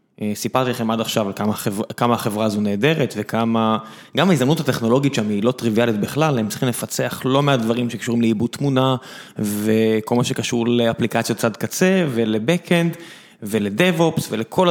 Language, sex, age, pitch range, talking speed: Hebrew, male, 20-39, 115-165 Hz, 155 wpm